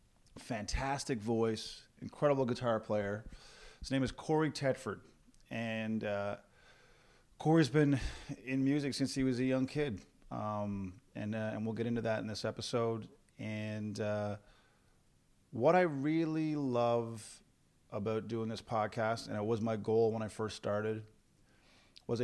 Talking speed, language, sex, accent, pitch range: 145 wpm, English, male, American, 105-125 Hz